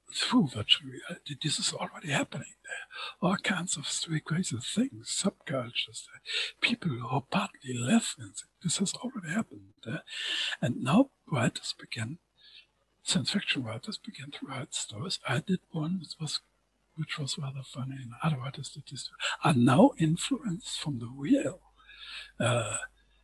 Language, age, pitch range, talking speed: English, 60-79, 130-200 Hz, 155 wpm